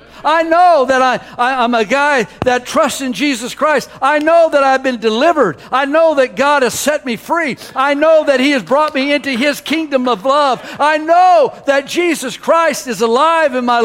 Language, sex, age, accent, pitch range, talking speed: English, male, 60-79, American, 190-290 Hz, 200 wpm